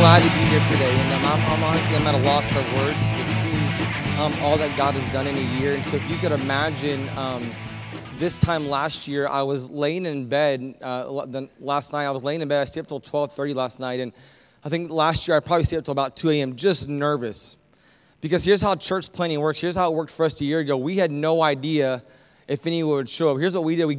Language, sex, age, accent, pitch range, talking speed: English, male, 20-39, American, 135-170 Hz, 255 wpm